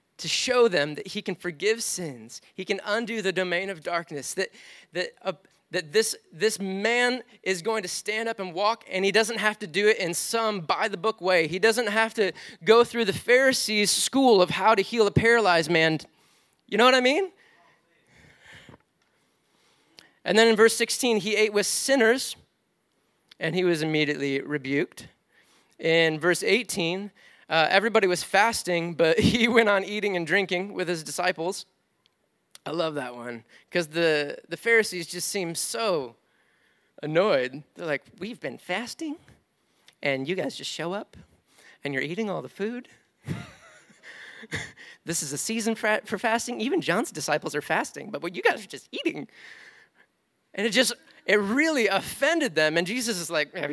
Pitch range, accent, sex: 170-225 Hz, American, male